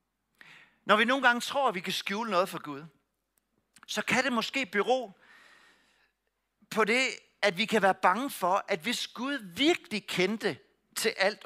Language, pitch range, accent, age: Danish, 190-240 Hz, native, 60-79